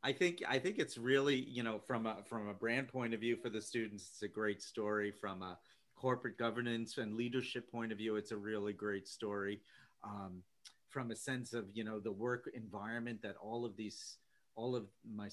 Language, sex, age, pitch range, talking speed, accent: English, male, 40-59, 100-115 Hz, 210 wpm, American